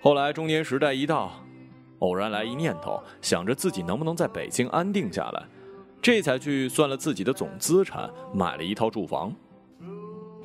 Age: 20-39